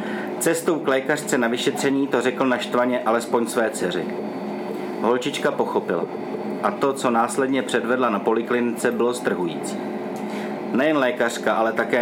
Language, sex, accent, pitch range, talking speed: Czech, male, native, 115-130 Hz, 130 wpm